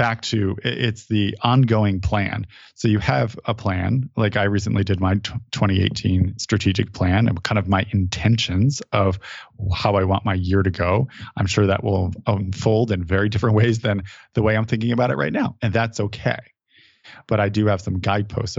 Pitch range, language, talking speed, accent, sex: 95-115 Hz, English, 190 wpm, American, male